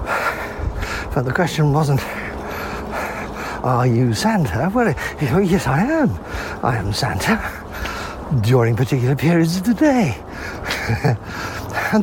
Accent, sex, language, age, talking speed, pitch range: British, male, English, 60-79, 110 wpm, 110-175 Hz